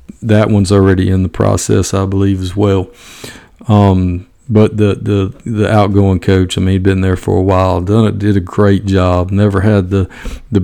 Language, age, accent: English, 40-59, American